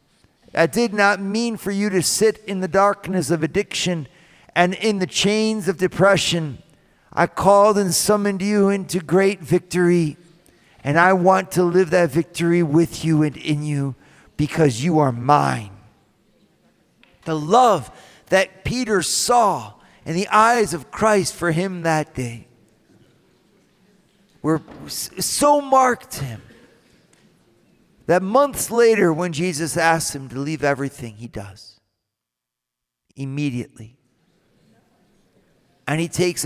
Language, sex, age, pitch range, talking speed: English, male, 50-69, 135-185 Hz, 125 wpm